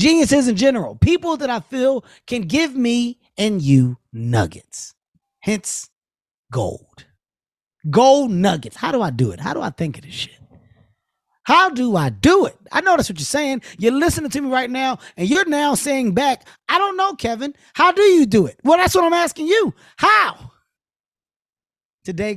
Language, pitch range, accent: English, 150-250 Hz, American